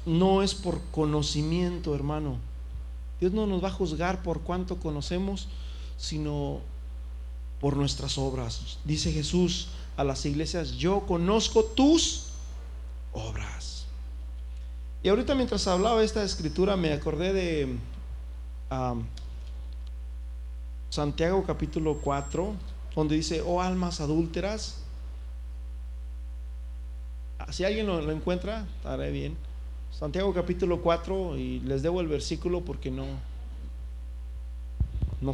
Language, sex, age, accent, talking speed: Spanish, male, 40-59, Mexican, 105 wpm